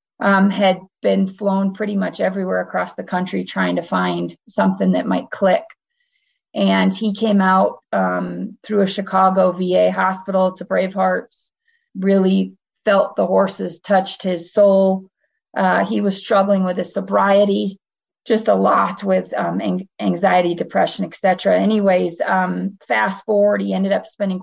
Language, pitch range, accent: English, 170-200 Hz, American